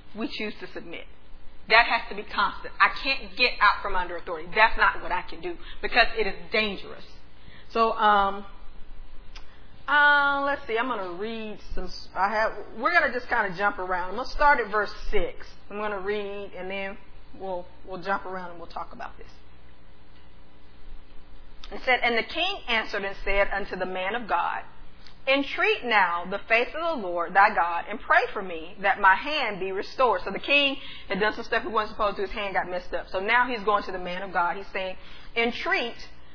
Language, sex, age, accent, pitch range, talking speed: English, female, 40-59, American, 170-225 Hz, 210 wpm